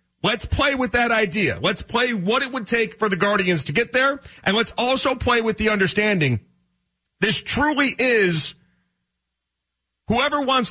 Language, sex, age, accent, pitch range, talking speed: English, male, 40-59, American, 160-225 Hz, 160 wpm